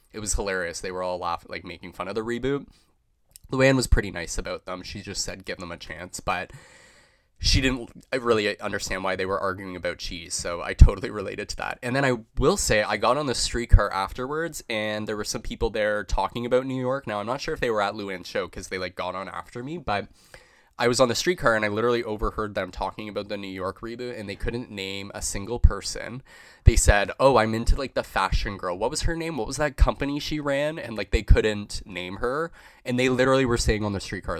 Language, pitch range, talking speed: English, 95-125 Hz, 240 wpm